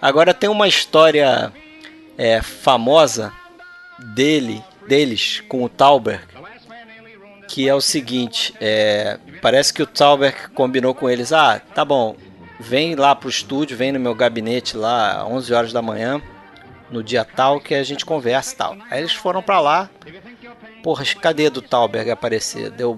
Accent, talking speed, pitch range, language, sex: Brazilian, 145 wpm, 125-195 Hz, Portuguese, male